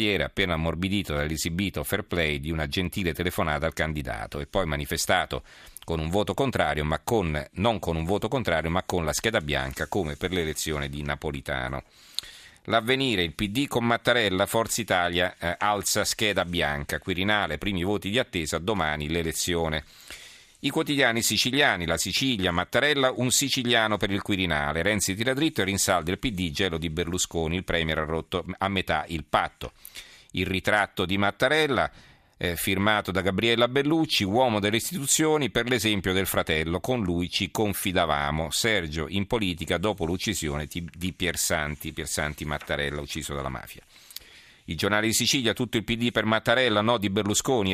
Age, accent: 40-59, native